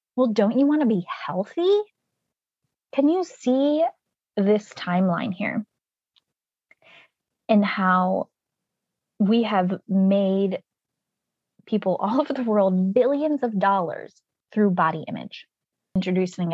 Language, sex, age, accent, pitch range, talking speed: English, female, 20-39, American, 185-245 Hz, 110 wpm